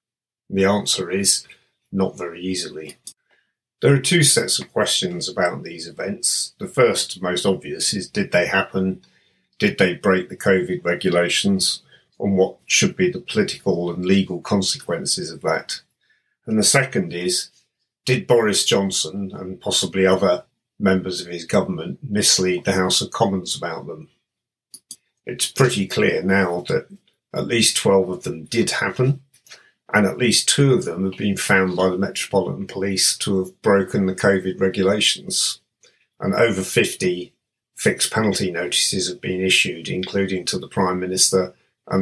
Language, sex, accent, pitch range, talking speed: English, male, British, 95-105 Hz, 155 wpm